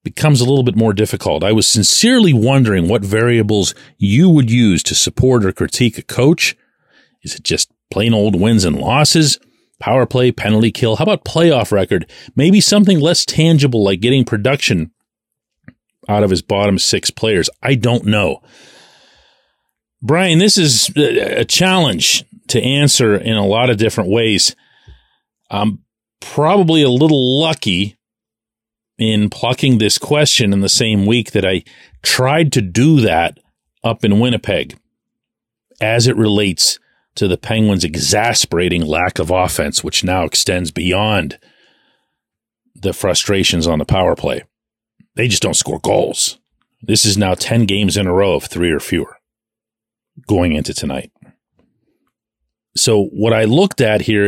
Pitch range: 100-130 Hz